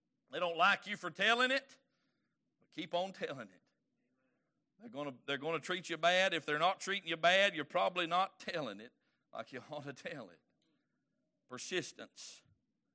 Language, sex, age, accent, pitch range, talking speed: English, male, 50-69, American, 155-230 Hz, 170 wpm